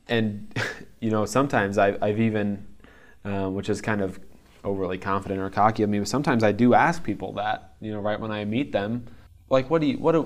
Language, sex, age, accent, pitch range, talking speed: English, male, 20-39, American, 100-110 Hz, 220 wpm